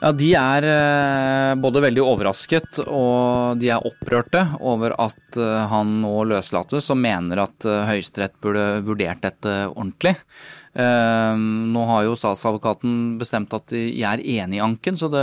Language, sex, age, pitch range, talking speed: English, male, 20-39, 115-150 Hz, 155 wpm